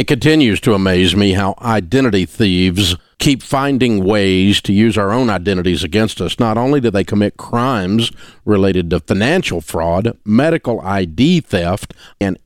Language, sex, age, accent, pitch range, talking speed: English, male, 50-69, American, 100-145 Hz, 155 wpm